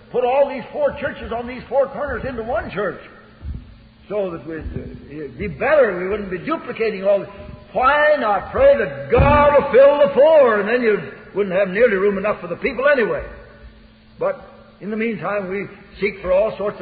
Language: English